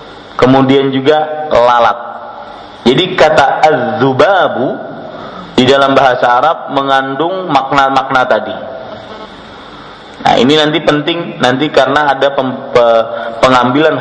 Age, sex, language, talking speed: 40-59, male, Malay, 90 wpm